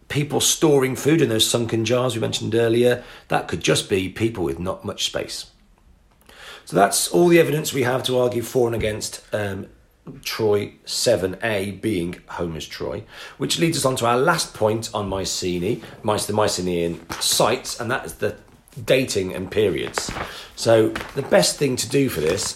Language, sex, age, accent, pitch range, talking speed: English, male, 40-59, British, 90-120 Hz, 175 wpm